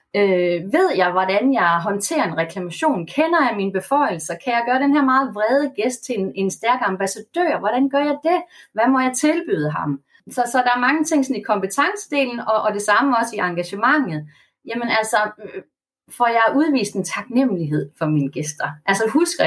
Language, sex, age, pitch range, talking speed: Danish, female, 30-49, 185-275 Hz, 190 wpm